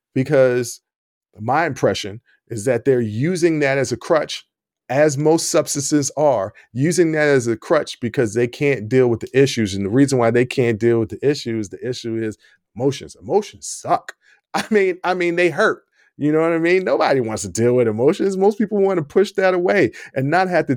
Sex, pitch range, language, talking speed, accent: male, 120-165 Hz, English, 205 wpm, American